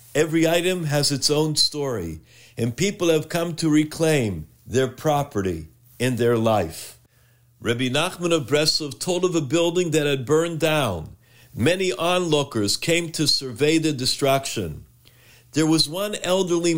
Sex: male